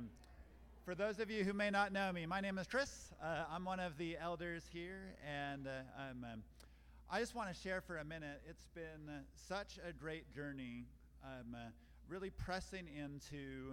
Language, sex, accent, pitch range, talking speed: English, male, American, 120-170 Hz, 190 wpm